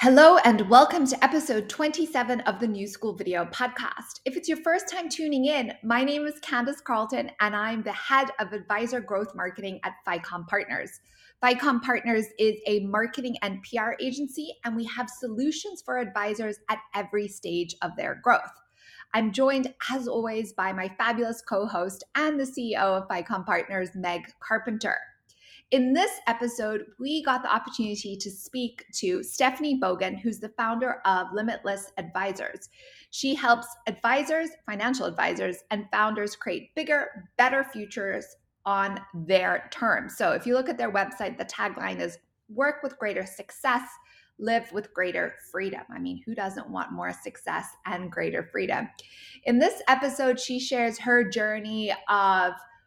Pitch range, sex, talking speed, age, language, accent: 205-260 Hz, female, 160 wpm, 20-39, English, American